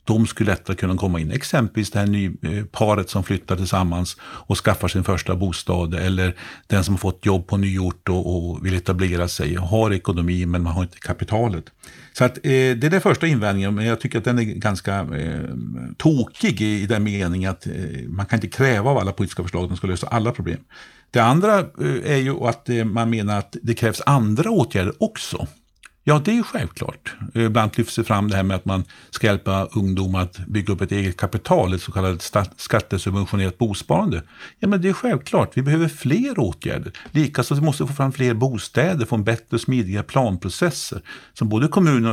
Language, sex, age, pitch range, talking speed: Swedish, male, 50-69, 95-120 Hz, 195 wpm